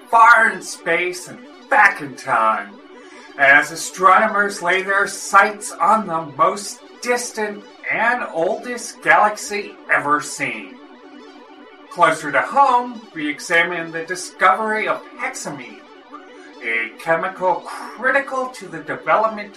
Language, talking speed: English, 110 wpm